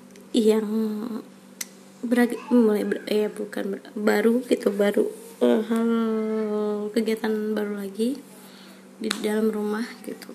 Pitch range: 210-240 Hz